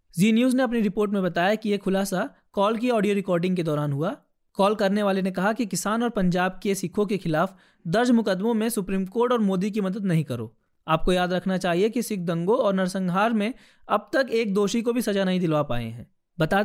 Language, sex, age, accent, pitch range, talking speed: Hindi, male, 20-39, native, 180-220 Hz, 225 wpm